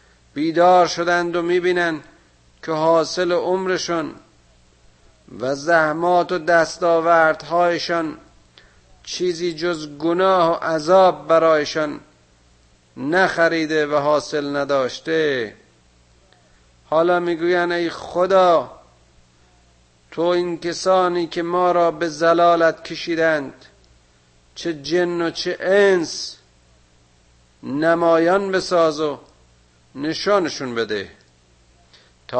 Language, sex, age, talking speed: Persian, male, 50-69, 85 wpm